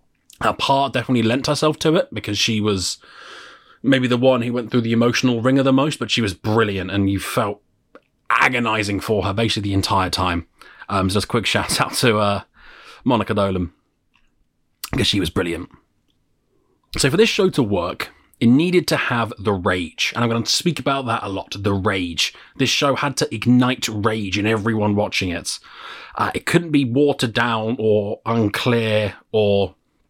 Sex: male